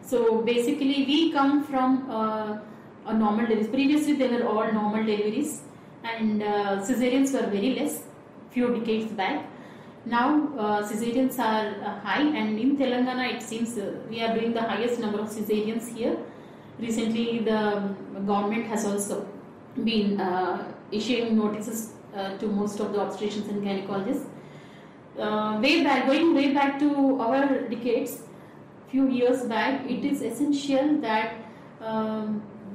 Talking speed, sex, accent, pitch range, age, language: 140 wpm, female, Indian, 215-270 Hz, 30-49, English